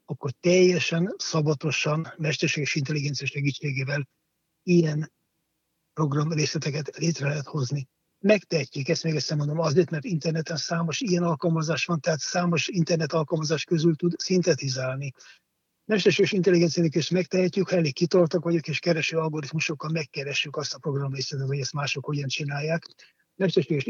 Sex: male